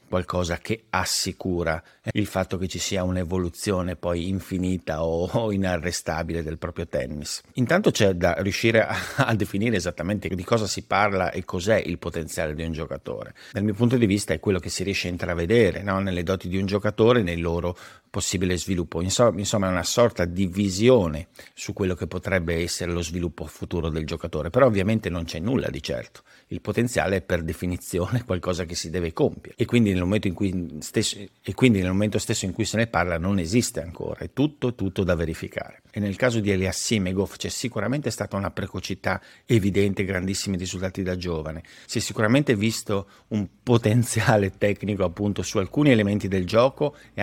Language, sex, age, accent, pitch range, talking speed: Italian, male, 50-69, native, 90-105 Hz, 185 wpm